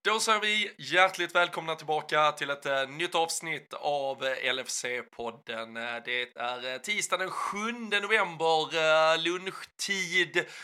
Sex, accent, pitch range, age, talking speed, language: male, native, 125-165 Hz, 20-39, 105 wpm, Swedish